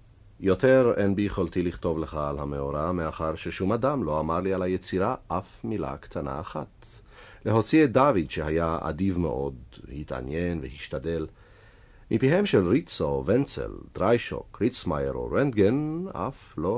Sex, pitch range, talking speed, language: male, 80-120 Hz, 145 wpm, Hebrew